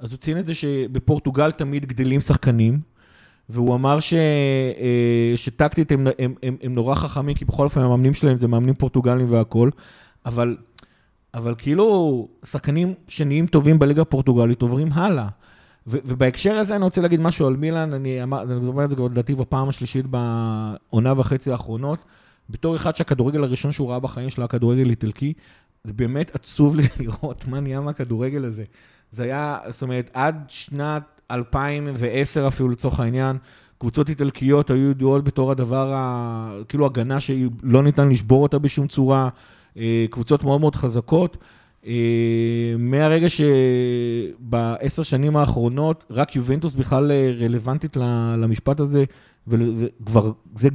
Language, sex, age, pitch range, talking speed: Hebrew, male, 30-49, 120-150 Hz, 140 wpm